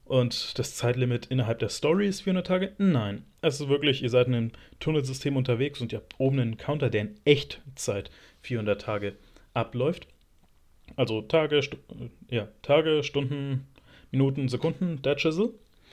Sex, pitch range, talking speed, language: male, 115-150 Hz, 155 wpm, German